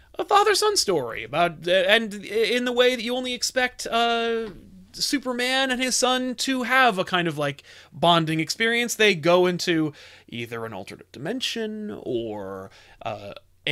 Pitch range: 120-190 Hz